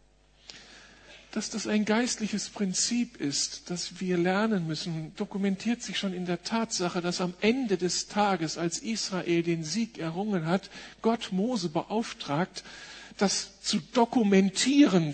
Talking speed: 130 wpm